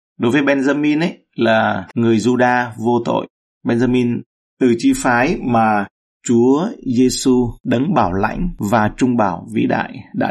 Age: 30-49